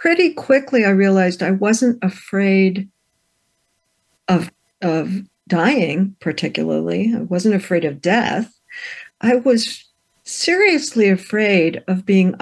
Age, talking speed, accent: 60-79, 105 wpm, American